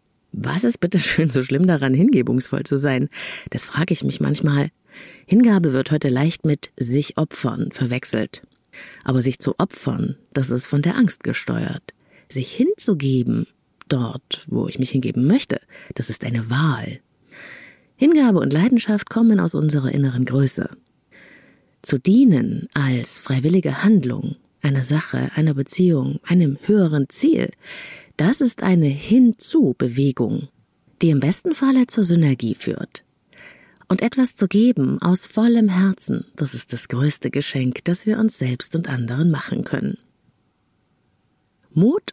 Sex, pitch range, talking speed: female, 130-195 Hz, 140 wpm